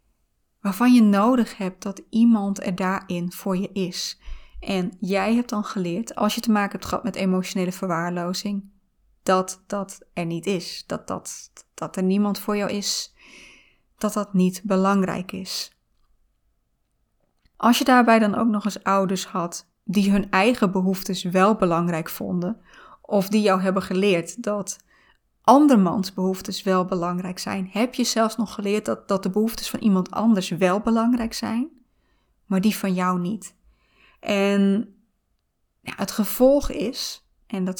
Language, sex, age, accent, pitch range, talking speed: Dutch, female, 20-39, Dutch, 190-220 Hz, 150 wpm